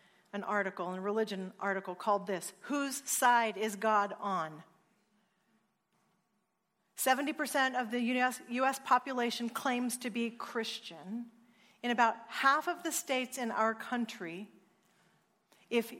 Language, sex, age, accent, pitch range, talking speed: English, female, 40-59, American, 215-270 Hz, 125 wpm